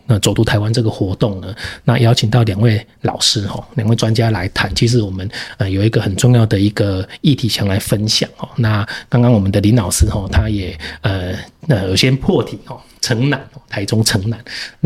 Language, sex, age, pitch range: Chinese, male, 30-49, 105-125 Hz